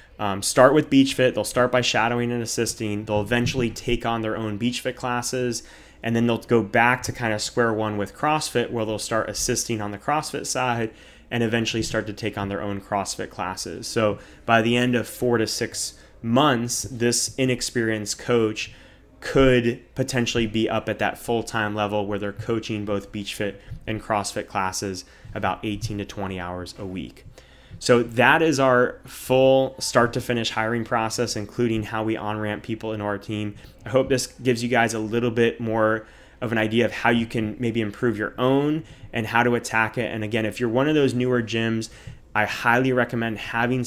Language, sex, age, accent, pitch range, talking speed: English, male, 20-39, American, 105-120 Hz, 190 wpm